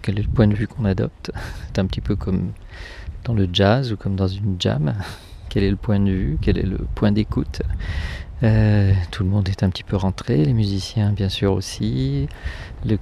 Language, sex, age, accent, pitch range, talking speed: French, male, 40-59, French, 95-110 Hz, 210 wpm